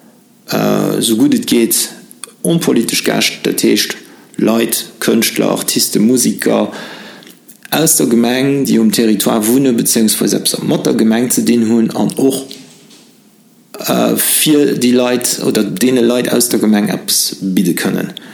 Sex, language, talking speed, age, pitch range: male, English, 135 wpm, 50-69, 105-145 Hz